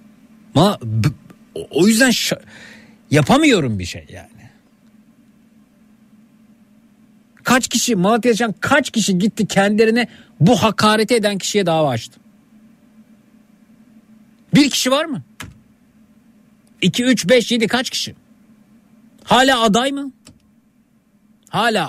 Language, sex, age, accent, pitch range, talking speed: Turkish, male, 50-69, native, 150-225 Hz, 95 wpm